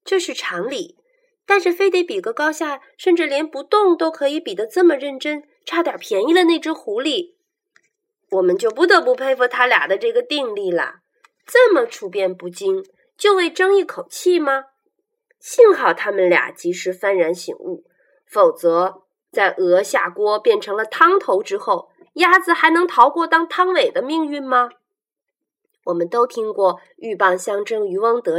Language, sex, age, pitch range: Chinese, female, 20-39, 250-415 Hz